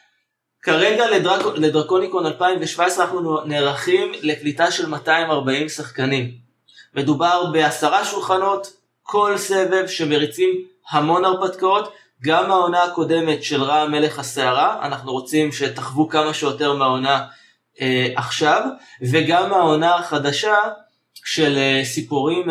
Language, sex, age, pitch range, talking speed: Hebrew, male, 20-39, 135-180 Hz, 100 wpm